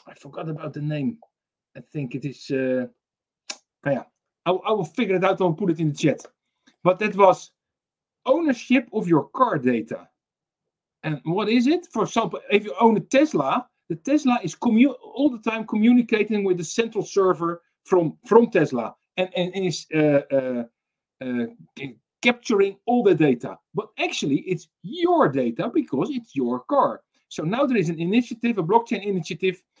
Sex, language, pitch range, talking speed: male, English, 160-230 Hz, 170 wpm